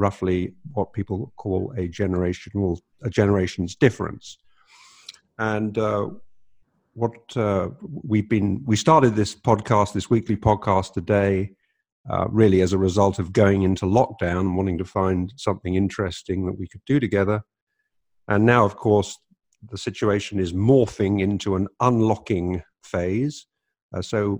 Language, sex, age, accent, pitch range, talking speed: English, male, 50-69, British, 95-115 Hz, 140 wpm